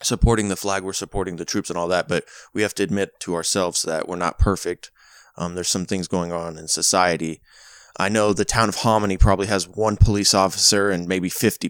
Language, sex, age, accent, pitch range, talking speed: English, male, 20-39, American, 85-100 Hz, 220 wpm